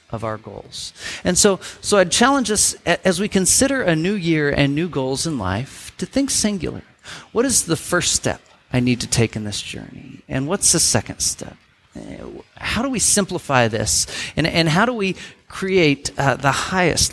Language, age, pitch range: English, 40-59, 115-165 Hz